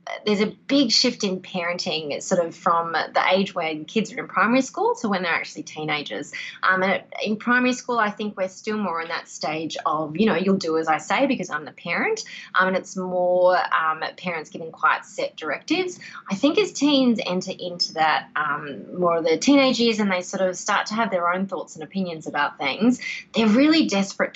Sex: female